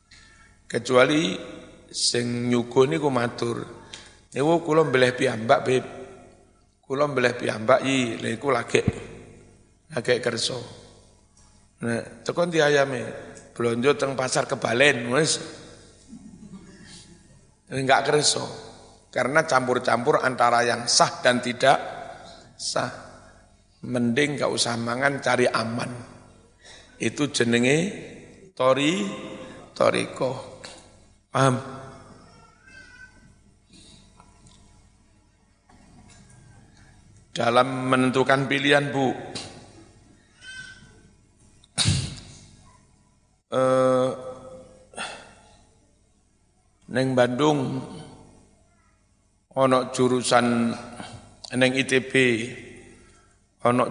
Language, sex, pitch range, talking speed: Indonesian, male, 110-135 Hz, 70 wpm